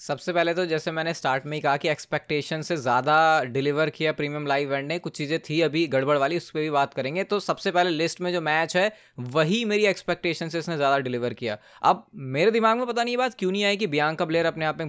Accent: native